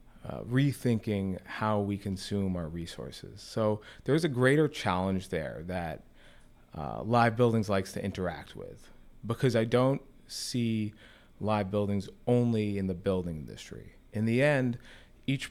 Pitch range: 95-115 Hz